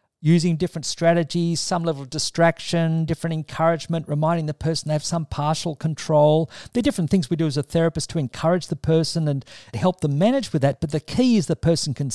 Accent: Australian